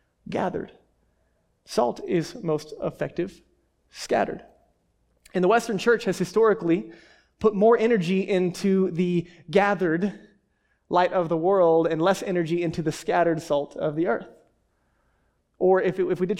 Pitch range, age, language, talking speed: 160-185 Hz, 20-39, English, 140 wpm